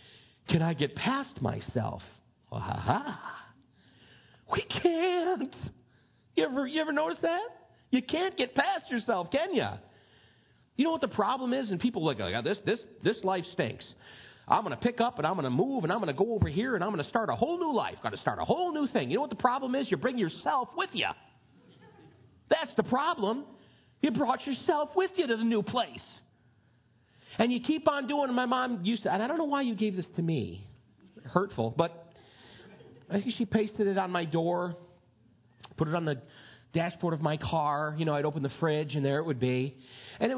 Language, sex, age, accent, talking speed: English, male, 40-59, American, 215 wpm